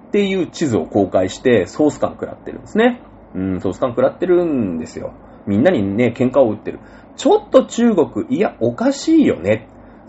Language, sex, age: Japanese, male, 30-49